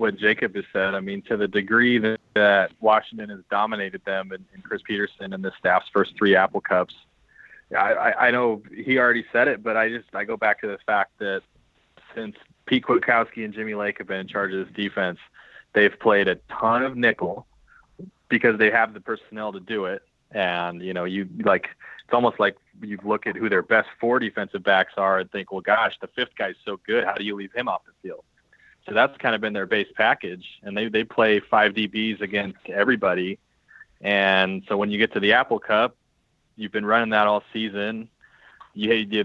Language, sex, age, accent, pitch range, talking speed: English, male, 30-49, American, 100-110 Hz, 215 wpm